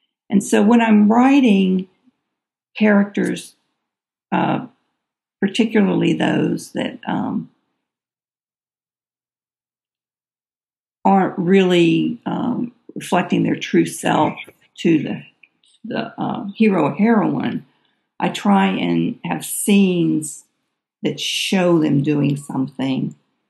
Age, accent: 50-69, American